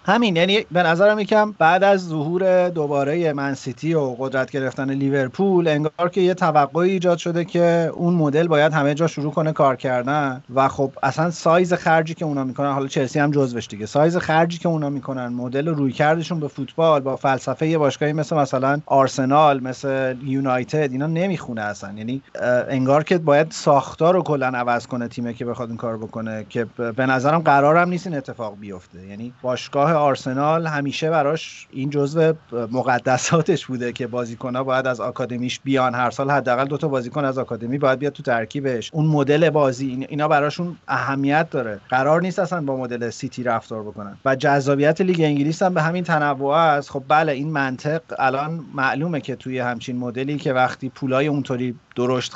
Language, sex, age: Persian, male, 30-49